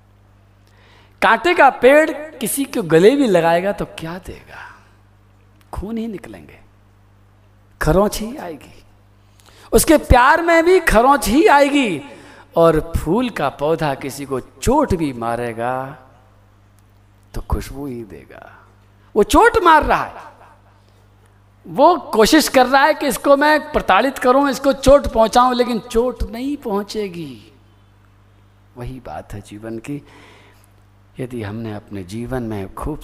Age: 50-69